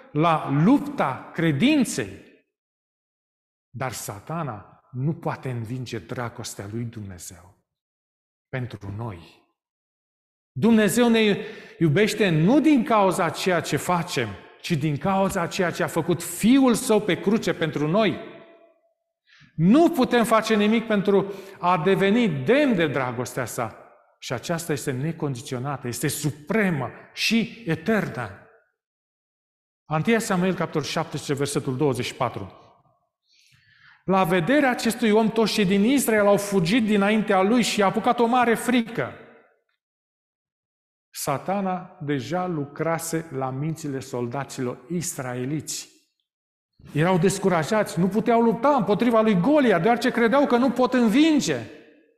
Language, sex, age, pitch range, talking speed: Romanian, male, 40-59, 150-230 Hz, 115 wpm